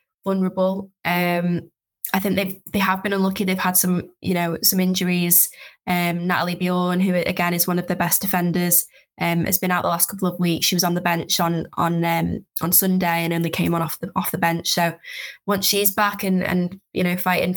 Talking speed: 220 wpm